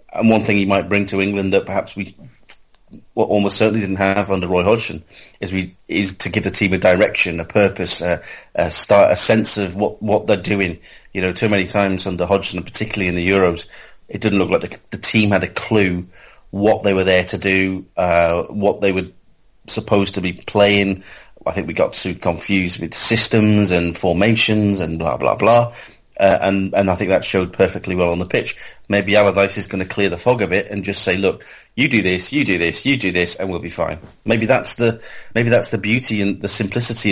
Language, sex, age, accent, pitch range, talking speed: English, male, 30-49, British, 90-105 Hz, 220 wpm